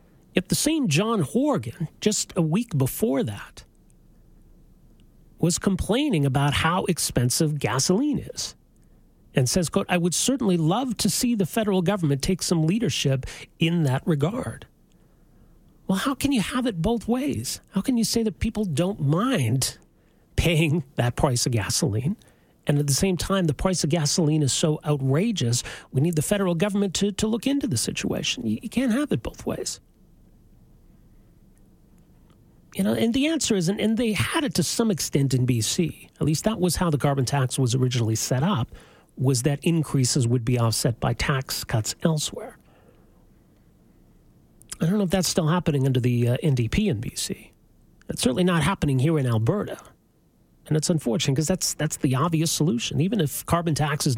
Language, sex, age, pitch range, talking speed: English, male, 40-59, 140-195 Hz, 175 wpm